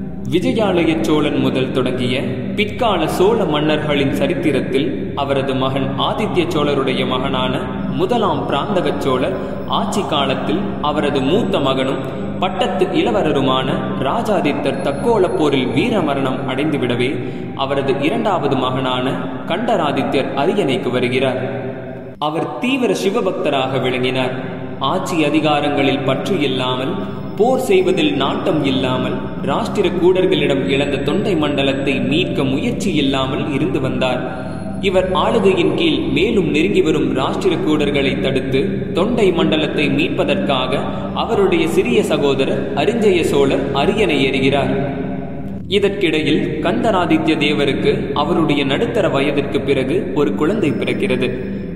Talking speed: 90 wpm